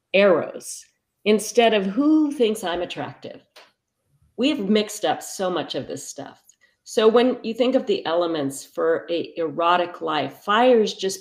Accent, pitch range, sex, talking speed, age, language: American, 180-245 Hz, female, 155 wpm, 50-69, English